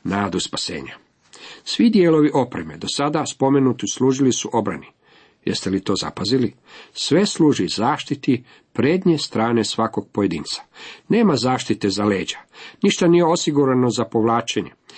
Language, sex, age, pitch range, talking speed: Croatian, male, 50-69, 110-140 Hz, 125 wpm